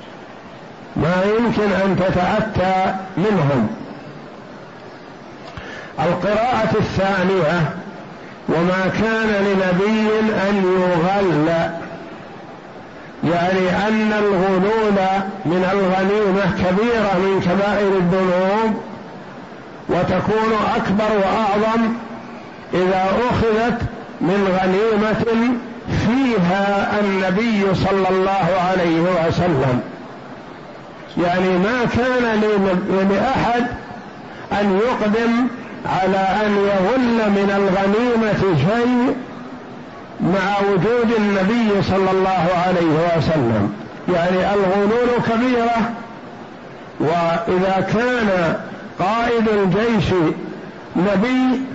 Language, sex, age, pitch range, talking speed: Arabic, male, 50-69, 185-215 Hz, 70 wpm